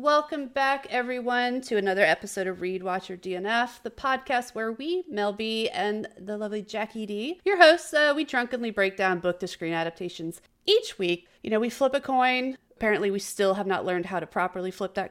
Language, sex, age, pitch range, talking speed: English, female, 30-49, 175-240 Hz, 200 wpm